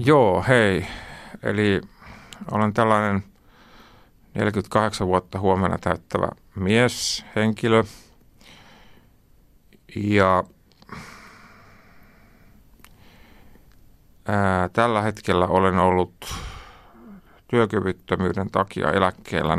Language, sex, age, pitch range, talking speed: Finnish, male, 50-69, 90-110 Hz, 60 wpm